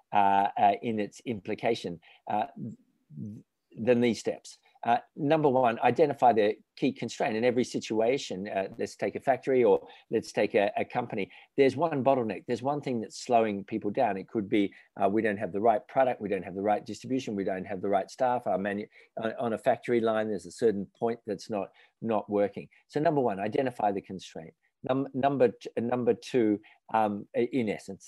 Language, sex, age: English, male, 50-69